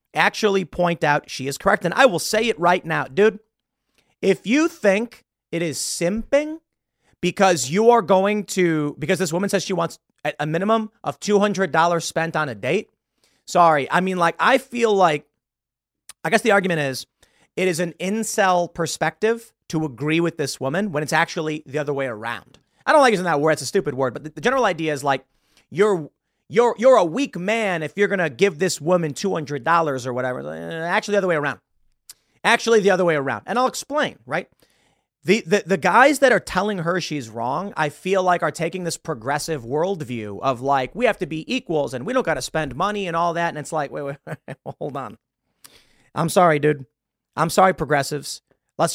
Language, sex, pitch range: English, male, 150-200 Hz